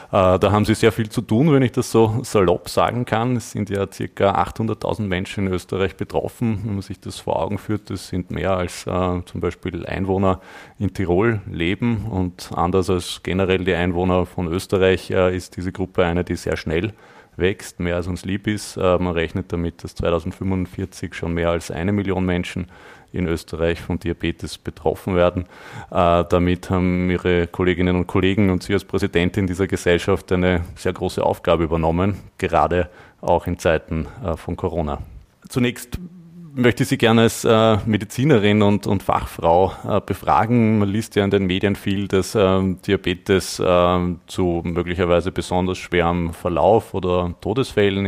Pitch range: 90-100 Hz